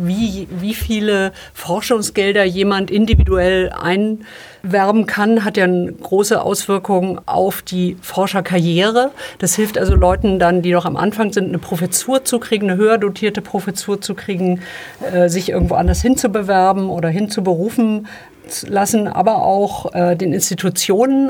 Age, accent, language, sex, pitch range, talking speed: 50-69, German, German, female, 185-215 Hz, 140 wpm